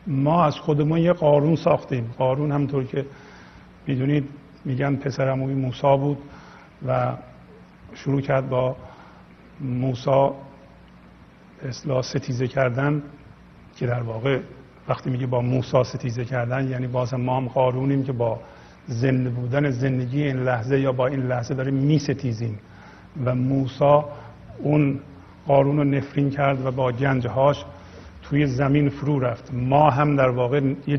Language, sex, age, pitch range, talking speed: Persian, male, 50-69, 125-150 Hz, 130 wpm